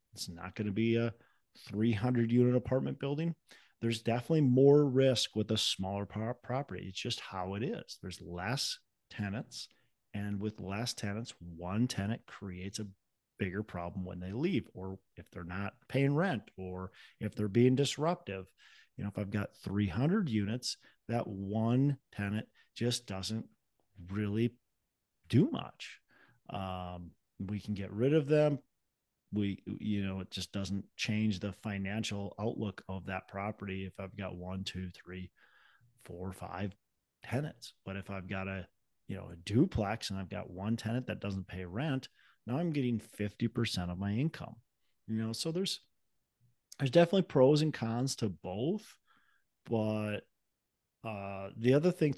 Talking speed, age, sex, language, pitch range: 155 wpm, 40-59, male, English, 95-120 Hz